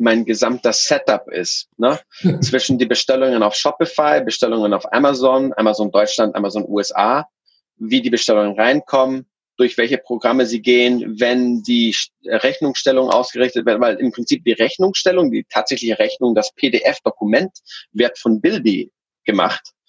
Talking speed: 135 wpm